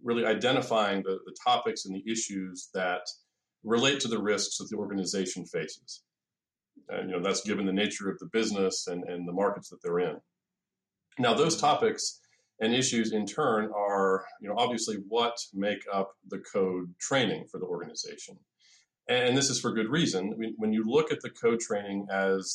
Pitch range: 95-120 Hz